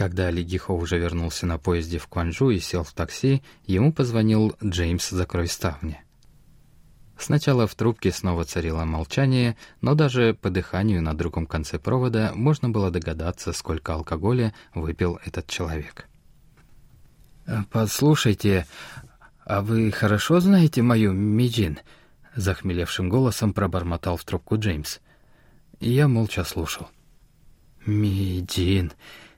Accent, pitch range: native, 90-120 Hz